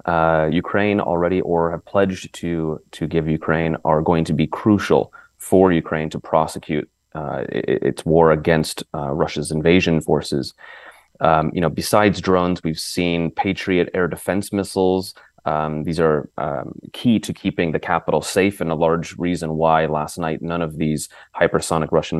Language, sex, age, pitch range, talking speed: English, male, 30-49, 80-90 Hz, 160 wpm